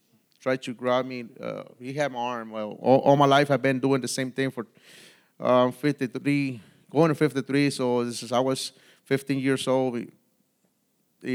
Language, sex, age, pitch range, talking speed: English, male, 30-49, 115-140 Hz, 185 wpm